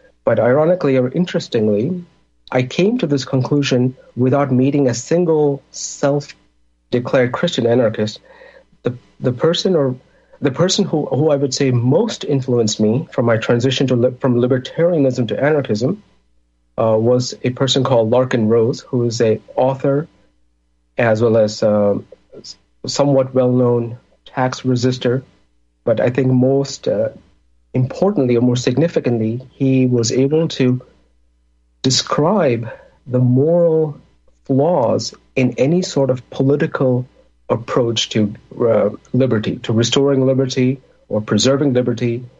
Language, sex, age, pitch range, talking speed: English, male, 50-69, 115-140 Hz, 125 wpm